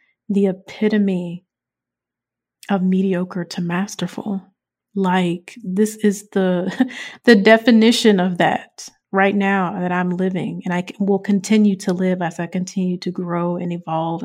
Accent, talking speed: American, 135 wpm